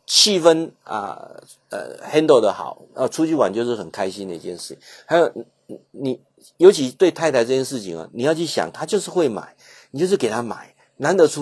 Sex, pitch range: male, 115-160 Hz